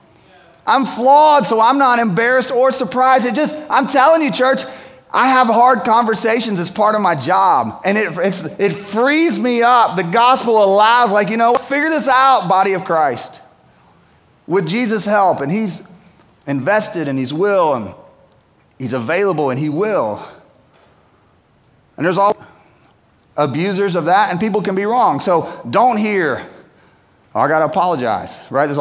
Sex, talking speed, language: male, 160 wpm, English